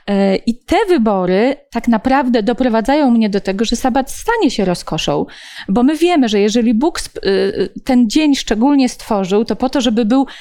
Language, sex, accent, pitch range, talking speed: Polish, female, native, 205-265 Hz, 165 wpm